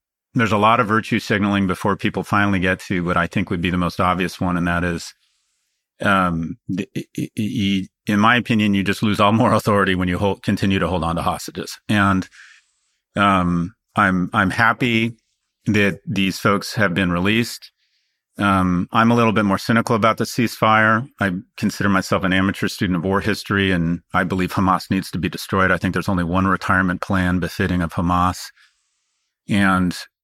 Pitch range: 90-105 Hz